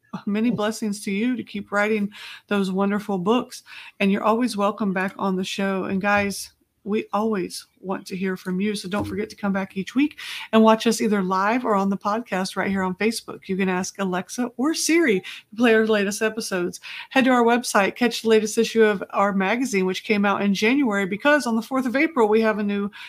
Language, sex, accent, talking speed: English, female, American, 220 wpm